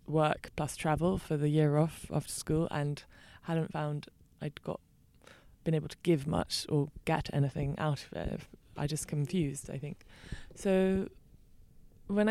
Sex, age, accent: female, 20-39, British